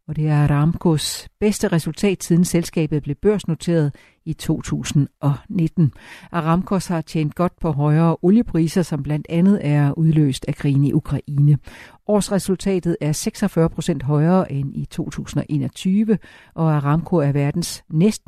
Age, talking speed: 60-79, 135 wpm